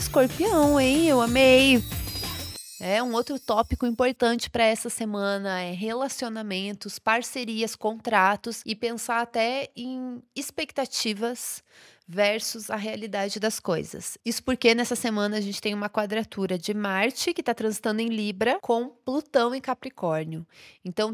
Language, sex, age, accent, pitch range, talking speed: Portuguese, female, 20-39, Brazilian, 200-240 Hz, 135 wpm